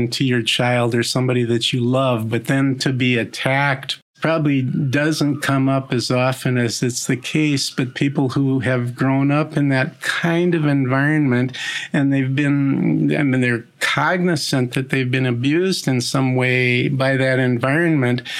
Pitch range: 125-150 Hz